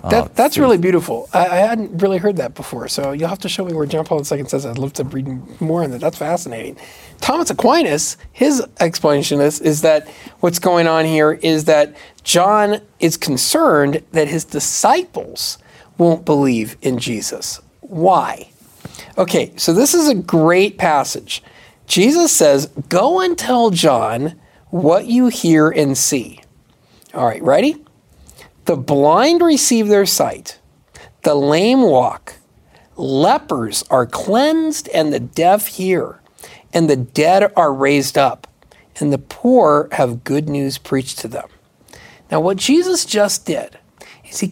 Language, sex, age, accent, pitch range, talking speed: English, male, 40-59, American, 145-210 Hz, 150 wpm